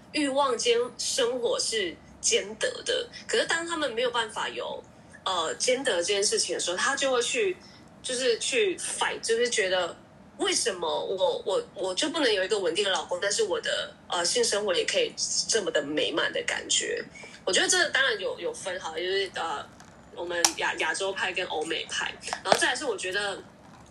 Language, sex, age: Chinese, female, 20-39